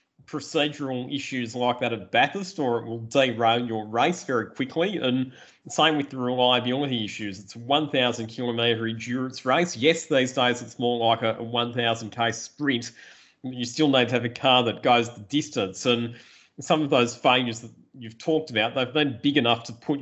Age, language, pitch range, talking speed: 30-49, English, 115-145 Hz, 185 wpm